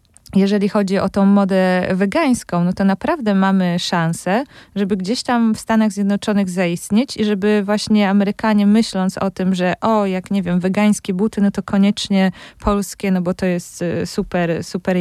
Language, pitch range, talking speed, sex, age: Polish, 175-205 Hz, 170 wpm, female, 20-39